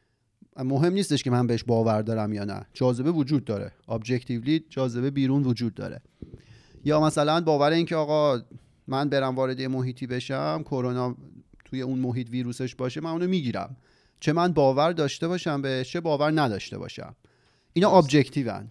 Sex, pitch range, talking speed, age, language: male, 125-155 Hz, 155 wpm, 30-49, Persian